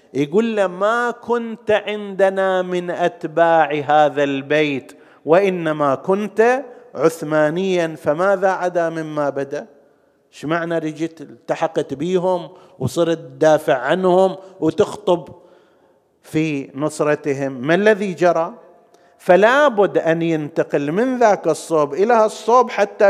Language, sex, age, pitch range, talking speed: Arabic, male, 50-69, 150-195 Hz, 100 wpm